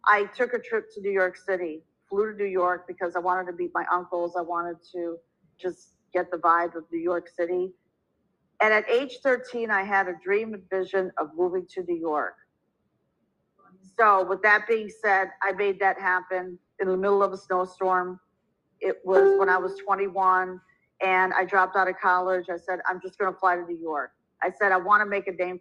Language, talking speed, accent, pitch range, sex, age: English, 210 wpm, American, 180-205 Hz, female, 40-59